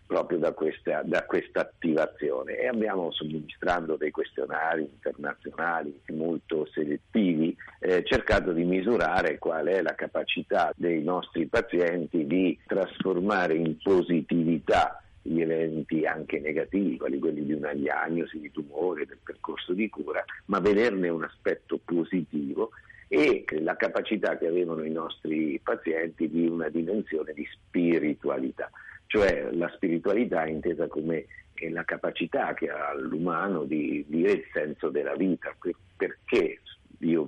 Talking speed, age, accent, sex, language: 130 wpm, 50-69, native, male, Italian